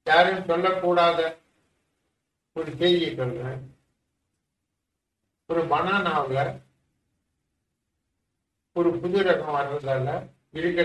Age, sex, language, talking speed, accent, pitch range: 60-79, male, English, 90 wpm, Indian, 125-190 Hz